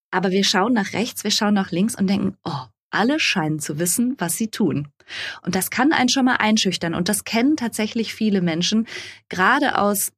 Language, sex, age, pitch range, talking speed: German, female, 20-39, 185-230 Hz, 200 wpm